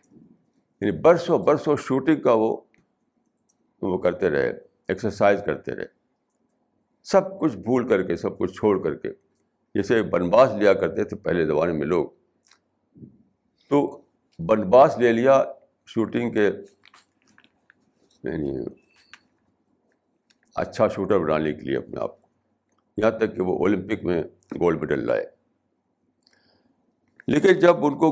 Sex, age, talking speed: male, 60-79, 130 wpm